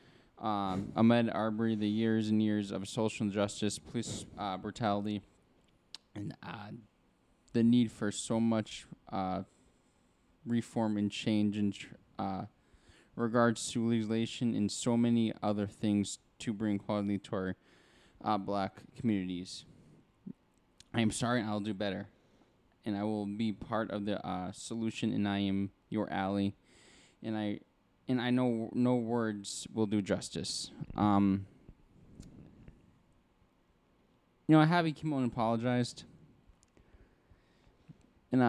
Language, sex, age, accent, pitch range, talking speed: English, male, 20-39, American, 105-120 Hz, 130 wpm